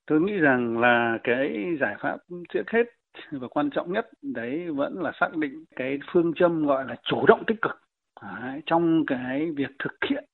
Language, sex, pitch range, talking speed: Vietnamese, male, 135-190 Hz, 190 wpm